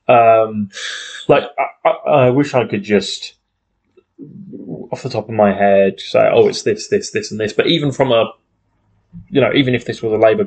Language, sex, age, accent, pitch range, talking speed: English, male, 20-39, British, 100-120 Hz, 195 wpm